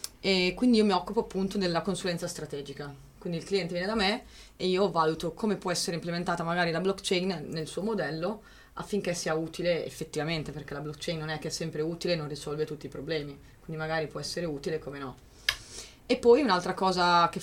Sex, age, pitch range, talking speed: female, 20-39, 155-185 Hz, 205 wpm